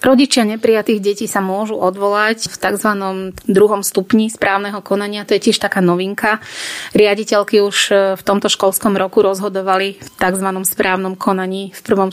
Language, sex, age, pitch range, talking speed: Slovak, female, 30-49, 190-205 Hz, 150 wpm